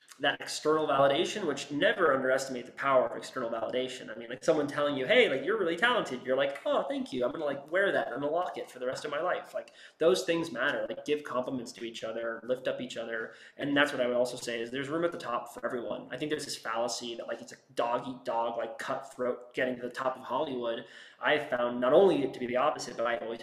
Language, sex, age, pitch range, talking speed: English, male, 20-39, 125-150 Hz, 260 wpm